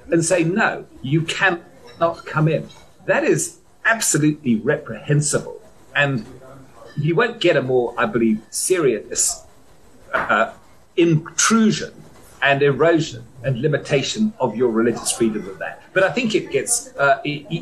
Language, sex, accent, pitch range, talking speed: English, male, British, 130-180 Hz, 130 wpm